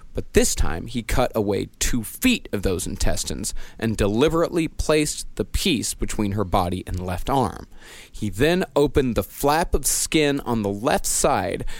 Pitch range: 105-155 Hz